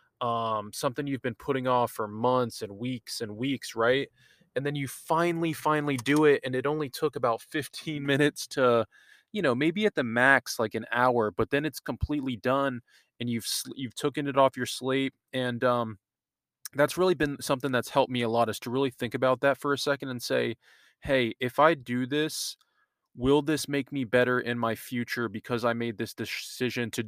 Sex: male